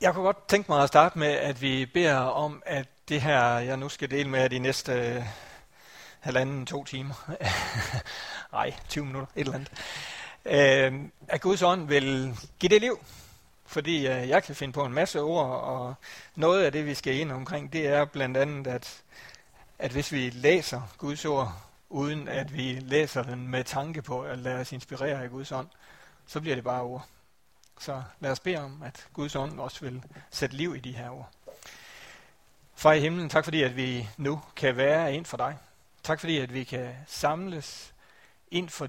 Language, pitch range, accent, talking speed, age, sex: Danish, 130-150 Hz, native, 195 wpm, 60-79, male